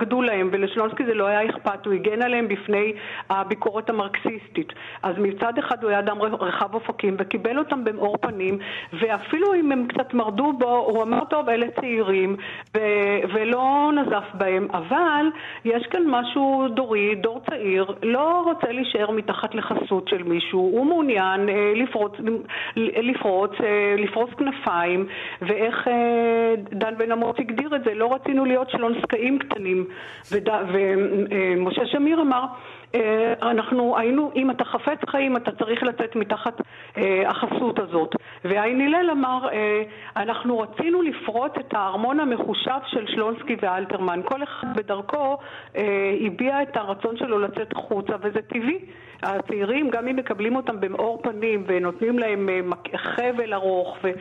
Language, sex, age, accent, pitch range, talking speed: Hebrew, female, 50-69, native, 205-250 Hz, 145 wpm